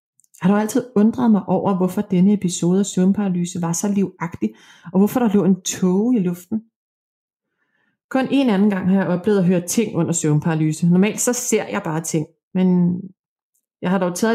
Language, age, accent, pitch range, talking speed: Danish, 30-49, native, 170-210 Hz, 190 wpm